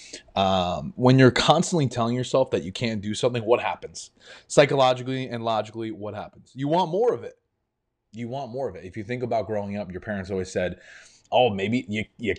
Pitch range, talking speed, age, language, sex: 110-135 Hz, 205 wpm, 20-39, English, male